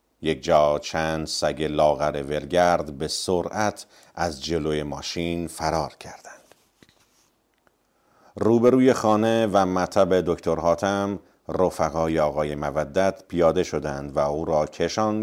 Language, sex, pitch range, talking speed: Persian, male, 75-90 Hz, 110 wpm